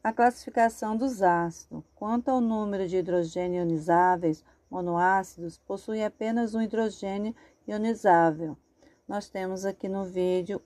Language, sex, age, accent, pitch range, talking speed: Portuguese, female, 40-59, Brazilian, 175-210 Hz, 120 wpm